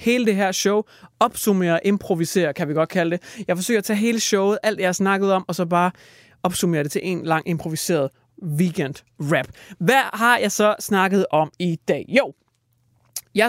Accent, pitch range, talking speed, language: native, 175-220 Hz, 190 wpm, Danish